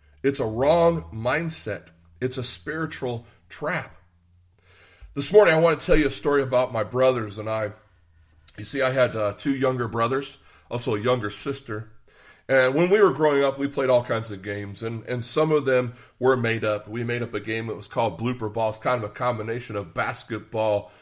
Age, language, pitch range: 40-59, English, 105-130 Hz